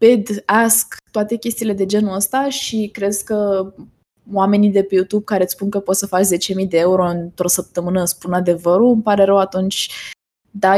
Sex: female